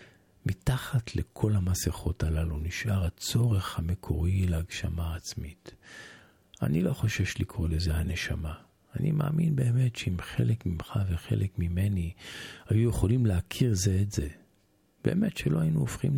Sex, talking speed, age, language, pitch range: male, 120 wpm, 50-69, Hebrew, 90-120 Hz